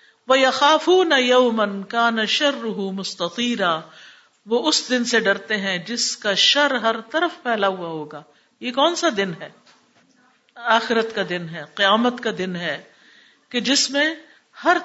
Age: 50-69